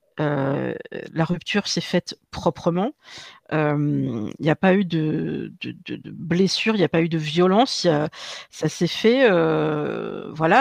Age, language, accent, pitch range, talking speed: 50-69, French, French, 165-210 Hz, 165 wpm